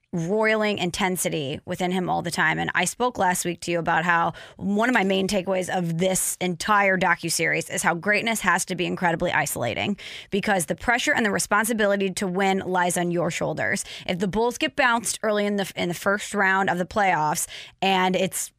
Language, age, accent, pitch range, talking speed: English, 20-39, American, 180-225 Hz, 200 wpm